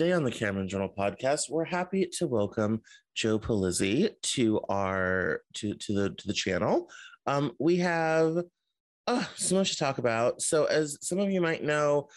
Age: 30-49